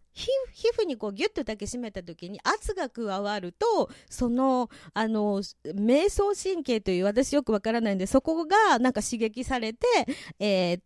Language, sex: Japanese, female